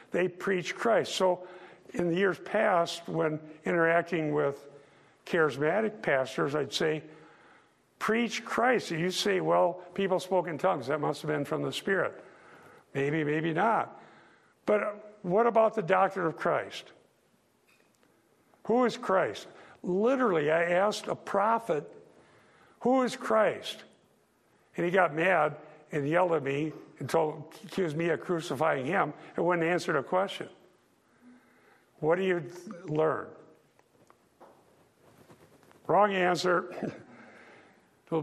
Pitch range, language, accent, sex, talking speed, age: 155-190 Hz, English, American, male, 125 wpm, 60-79